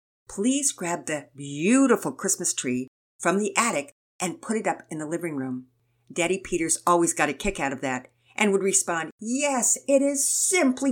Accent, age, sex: American, 50-69, female